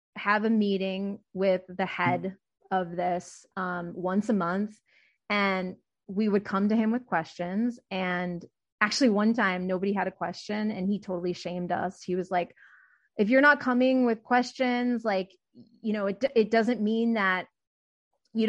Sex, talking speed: female, 165 wpm